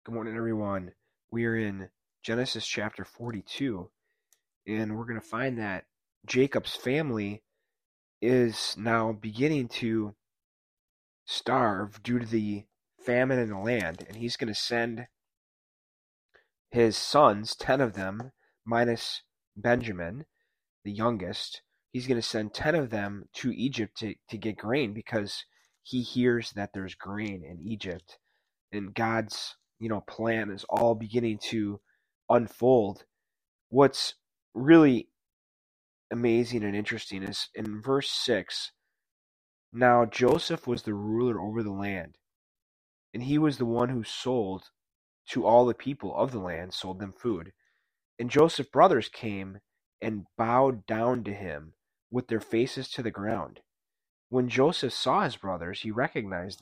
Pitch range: 100-120 Hz